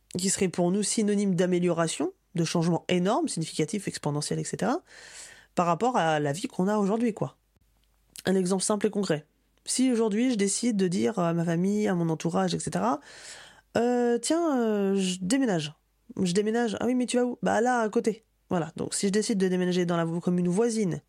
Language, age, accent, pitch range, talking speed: French, 20-39, French, 170-235 Hz, 190 wpm